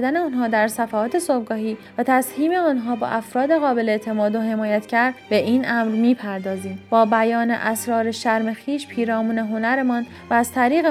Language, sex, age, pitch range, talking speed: Persian, female, 30-49, 220-275 Hz, 155 wpm